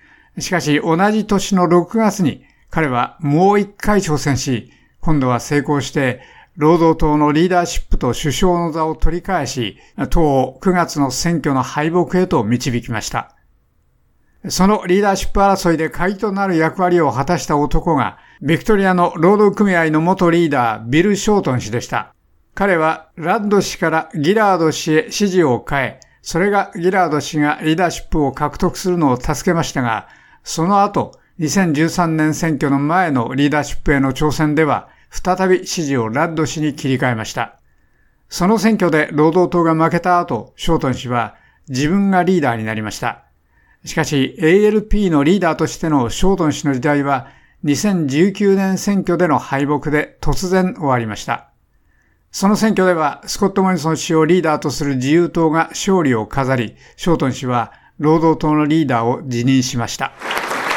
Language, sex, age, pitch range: Japanese, male, 60-79, 140-180 Hz